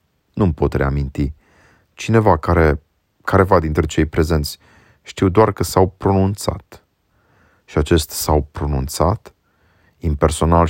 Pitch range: 80-100 Hz